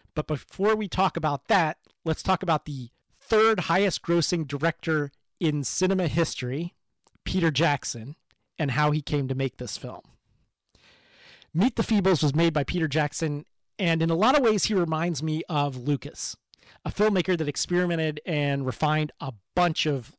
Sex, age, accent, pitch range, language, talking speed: male, 30-49, American, 145-175 Hz, English, 165 wpm